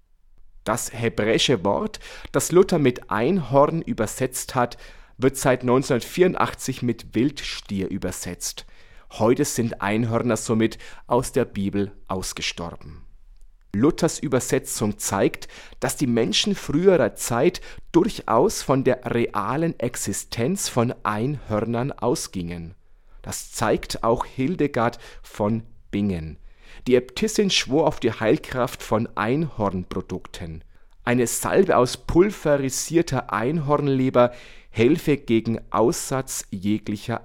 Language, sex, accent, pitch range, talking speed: German, male, German, 105-140 Hz, 100 wpm